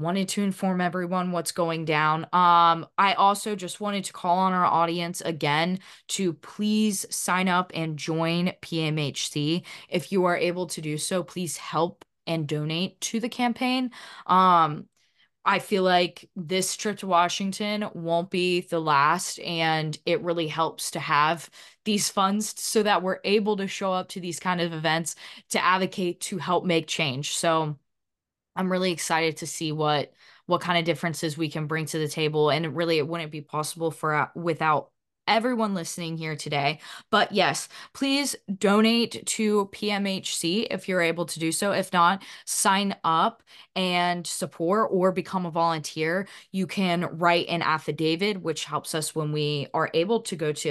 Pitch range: 160-190 Hz